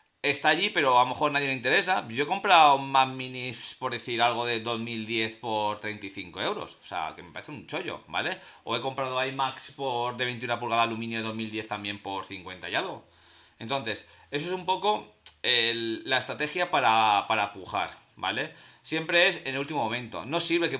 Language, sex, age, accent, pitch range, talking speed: Spanish, male, 30-49, Spanish, 110-155 Hz, 195 wpm